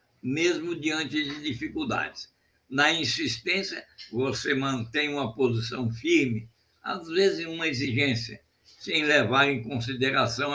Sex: male